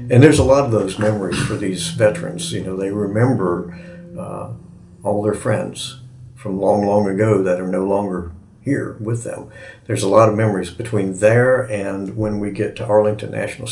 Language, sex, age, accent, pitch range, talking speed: English, male, 60-79, American, 100-115 Hz, 190 wpm